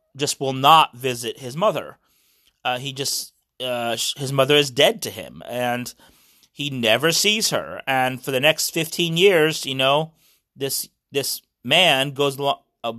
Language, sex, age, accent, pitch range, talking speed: English, male, 30-49, American, 120-150 Hz, 160 wpm